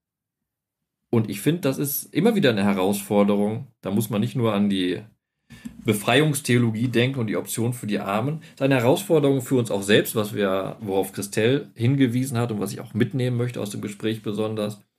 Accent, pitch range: German, 110-150 Hz